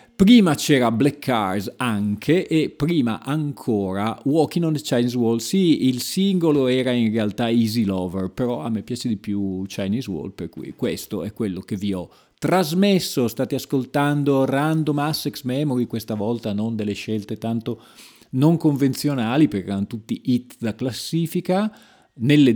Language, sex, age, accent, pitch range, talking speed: Italian, male, 40-59, native, 105-135 Hz, 155 wpm